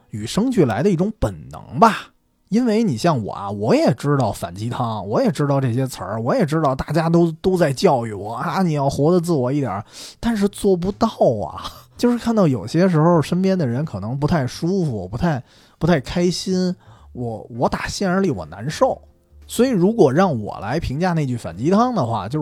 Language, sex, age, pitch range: Chinese, male, 20-39, 110-180 Hz